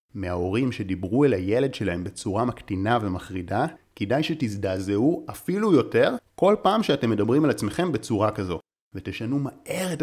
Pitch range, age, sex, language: 95-130 Hz, 30-49, male, Hebrew